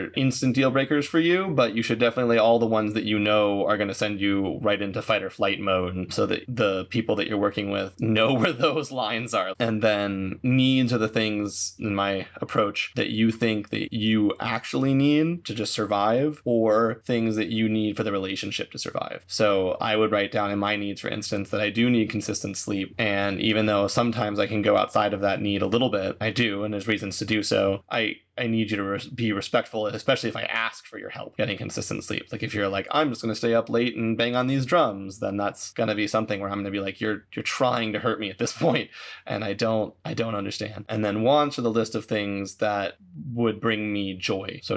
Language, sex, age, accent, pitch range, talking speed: English, male, 20-39, American, 100-115 Hz, 245 wpm